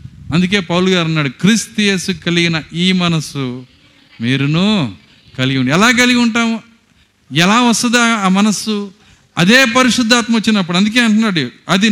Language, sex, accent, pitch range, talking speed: Telugu, male, native, 135-225 Hz, 125 wpm